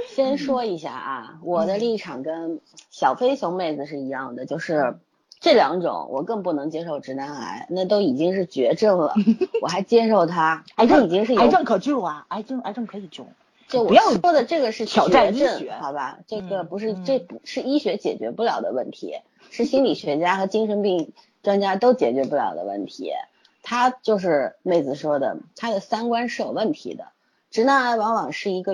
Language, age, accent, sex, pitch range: Chinese, 30-49, native, female, 180-260 Hz